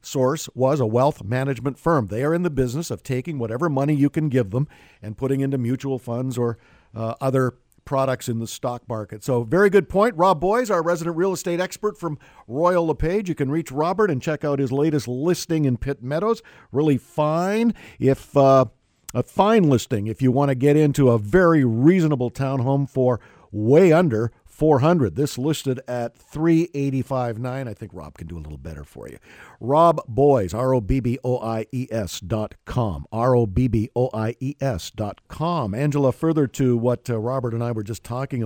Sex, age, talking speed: male, 50-69, 175 wpm